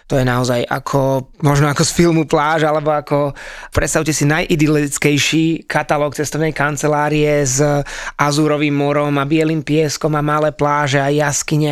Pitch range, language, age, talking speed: 145-160 Hz, Slovak, 20-39, 145 wpm